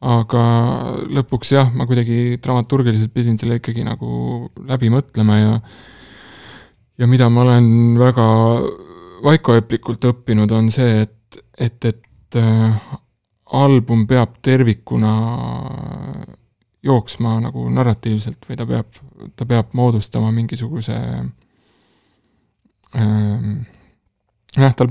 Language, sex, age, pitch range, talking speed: English, male, 20-39, 105-125 Hz, 95 wpm